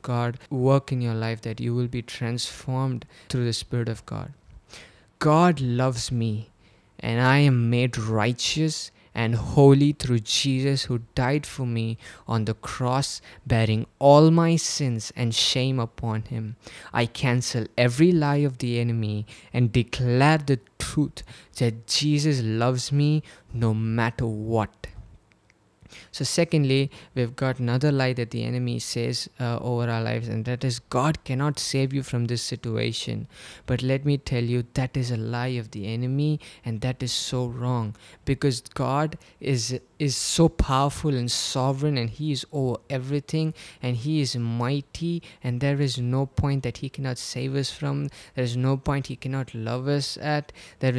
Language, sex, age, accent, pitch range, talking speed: English, male, 20-39, Indian, 120-140 Hz, 165 wpm